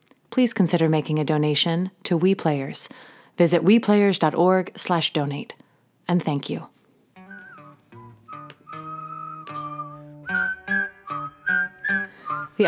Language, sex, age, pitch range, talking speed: English, female, 30-49, 160-210 Hz, 65 wpm